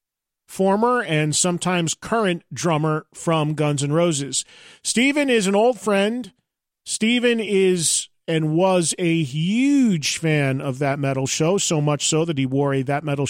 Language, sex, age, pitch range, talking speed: English, male, 40-59, 145-190 Hz, 155 wpm